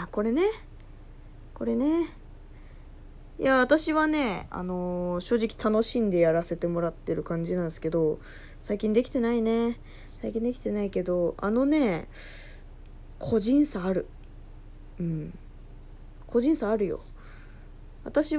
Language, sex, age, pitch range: Japanese, female, 20-39, 175-290 Hz